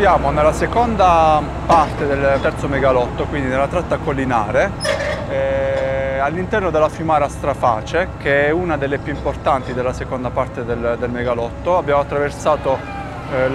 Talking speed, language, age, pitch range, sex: 135 wpm, Italian, 30-49, 135-160 Hz, male